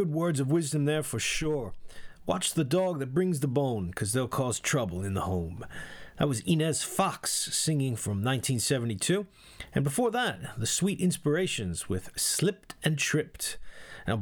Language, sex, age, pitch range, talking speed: English, male, 30-49, 105-155 Hz, 165 wpm